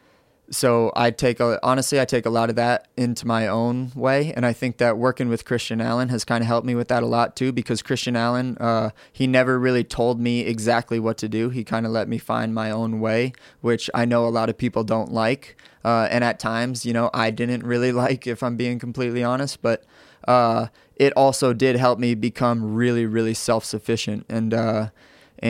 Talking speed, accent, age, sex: 215 wpm, American, 20-39, male